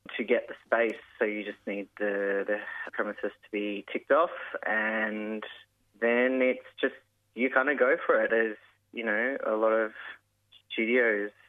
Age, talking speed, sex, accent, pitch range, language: 20-39, 165 wpm, male, Australian, 105-130 Hz, English